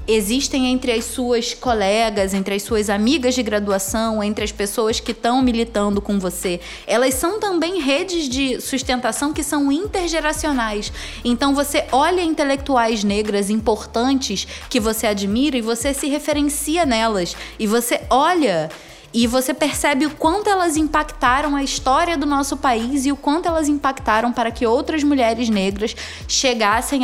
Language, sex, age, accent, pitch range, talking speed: Portuguese, female, 20-39, Brazilian, 225-300 Hz, 150 wpm